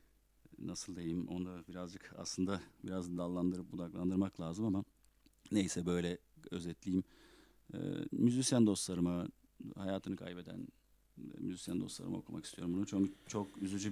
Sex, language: male, Turkish